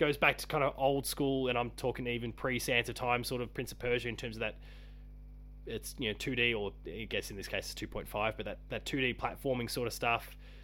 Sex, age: male, 20-39